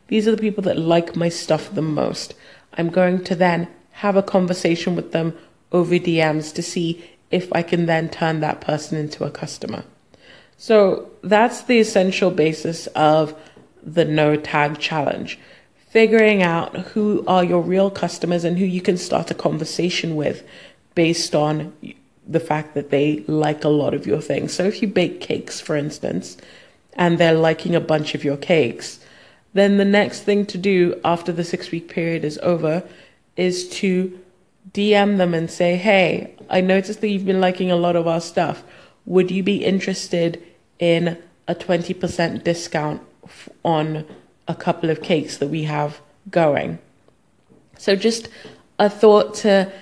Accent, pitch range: British, 160-190 Hz